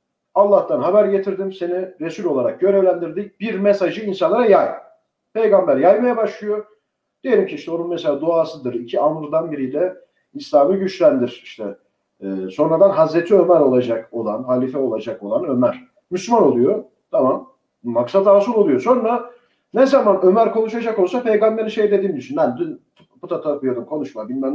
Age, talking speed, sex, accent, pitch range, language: 40-59, 140 wpm, male, native, 180-240 Hz, Turkish